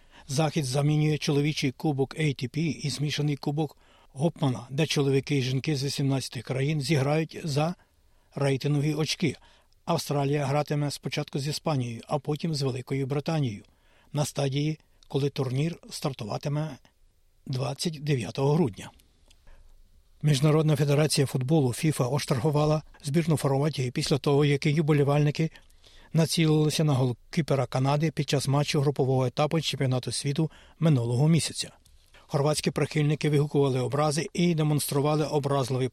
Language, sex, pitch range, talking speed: Ukrainian, male, 135-155 Hz, 115 wpm